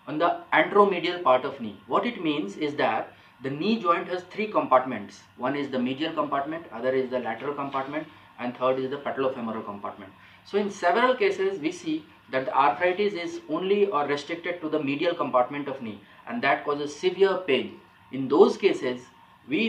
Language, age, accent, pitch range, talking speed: Bengali, 30-49, native, 130-195 Hz, 185 wpm